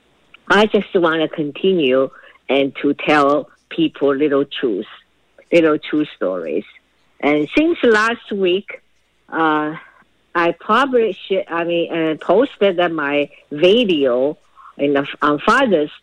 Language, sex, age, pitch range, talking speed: English, female, 50-69, 140-180 Hz, 110 wpm